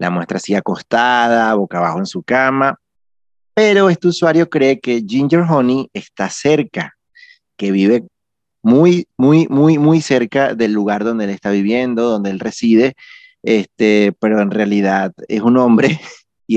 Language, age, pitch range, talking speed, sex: Spanish, 30-49, 100-140 Hz, 150 wpm, male